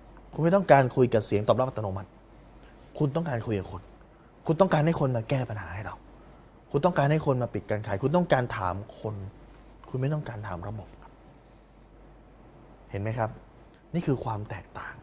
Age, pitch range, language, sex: 20-39, 95-120 Hz, Thai, male